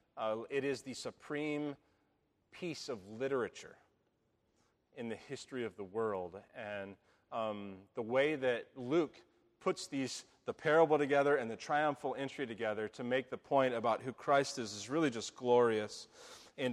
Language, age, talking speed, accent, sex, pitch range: English, 30-49, 155 wpm, American, male, 110-135 Hz